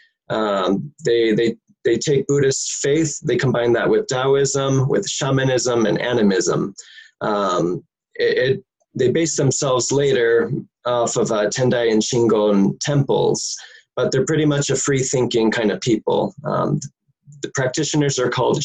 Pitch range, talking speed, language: 115-155 Hz, 145 wpm, English